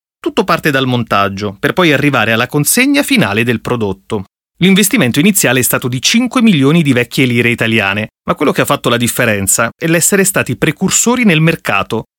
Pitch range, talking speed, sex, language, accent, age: 120-170 Hz, 175 wpm, male, Italian, native, 30-49